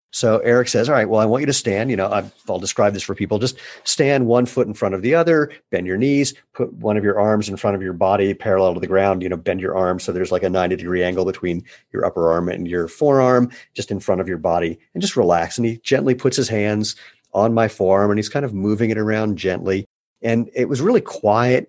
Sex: male